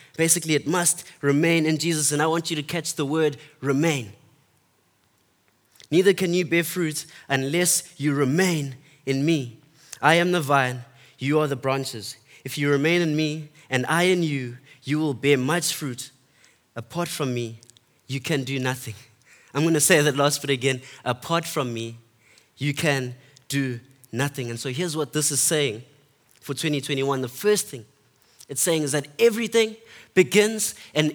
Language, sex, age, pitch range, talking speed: English, male, 20-39, 140-180 Hz, 170 wpm